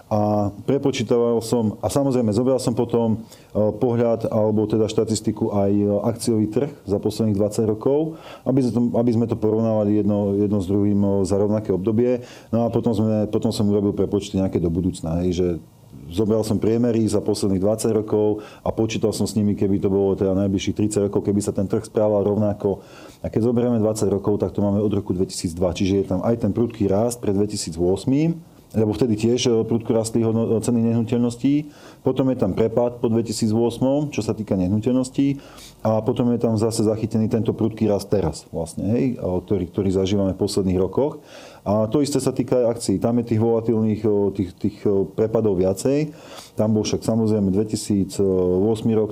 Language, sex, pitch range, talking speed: Slovak, male, 100-115 Hz, 175 wpm